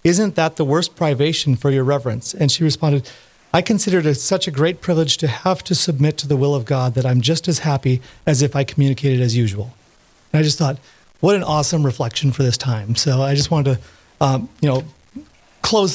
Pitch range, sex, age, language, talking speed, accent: 135-160 Hz, male, 30-49, English, 220 wpm, American